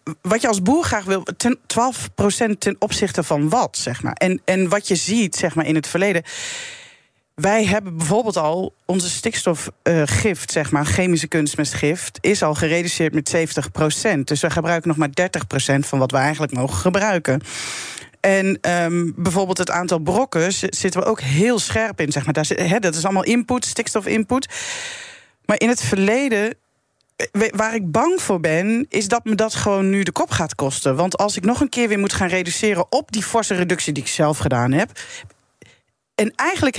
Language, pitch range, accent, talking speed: Dutch, 165-225 Hz, Dutch, 175 wpm